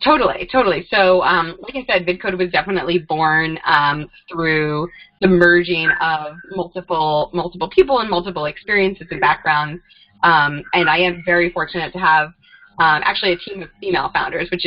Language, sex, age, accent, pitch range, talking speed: English, female, 20-39, American, 155-190 Hz, 165 wpm